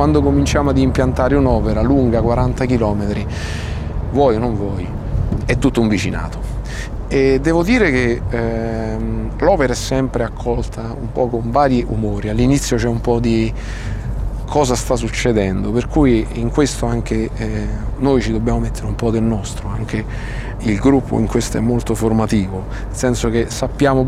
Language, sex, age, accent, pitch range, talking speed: Italian, male, 40-59, native, 105-120 Hz, 160 wpm